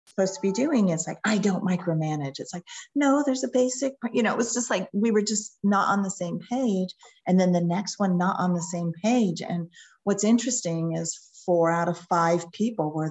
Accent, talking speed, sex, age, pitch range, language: American, 225 wpm, female, 40-59, 155-195 Hz, English